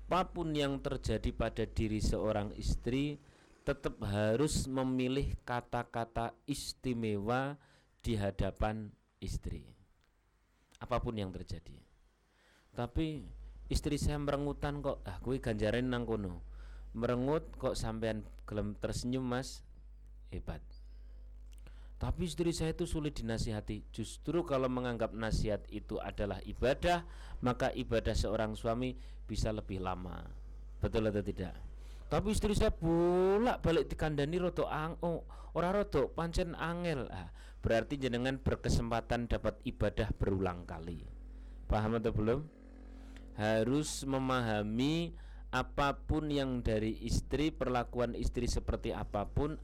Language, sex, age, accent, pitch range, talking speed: Indonesian, male, 40-59, native, 105-140 Hz, 110 wpm